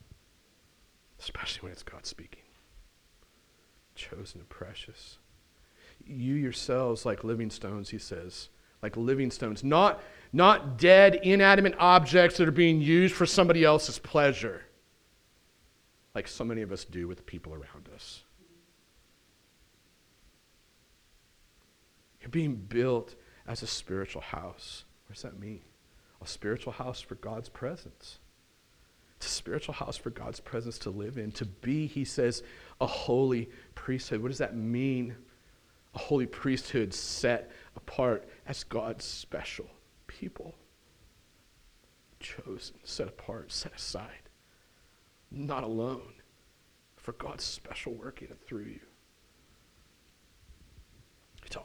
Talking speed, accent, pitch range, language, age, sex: 120 wpm, American, 95-130 Hz, English, 40-59, male